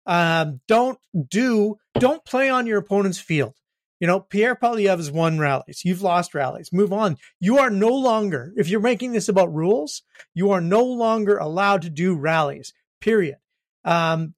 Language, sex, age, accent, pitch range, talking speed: English, male, 40-59, American, 160-205 Hz, 170 wpm